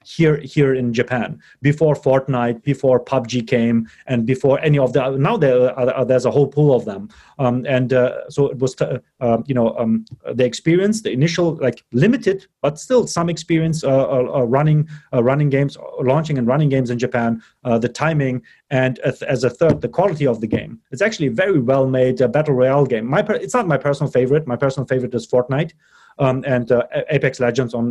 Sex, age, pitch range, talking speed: male, 30-49, 125-150 Hz, 205 wpm